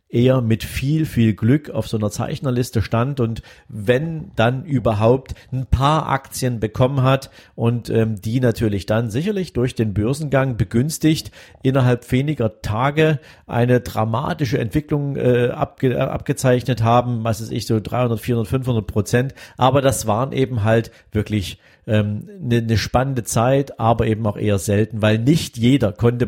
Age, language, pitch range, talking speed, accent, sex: 50-69, German, 110-135 Hz, 150 wpm, German, male